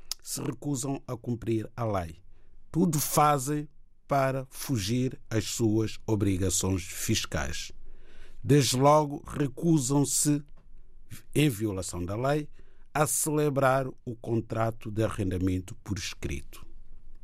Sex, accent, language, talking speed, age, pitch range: male, Brazilian, Portuguese, 100 wpm, 60-79, 100-145 Hz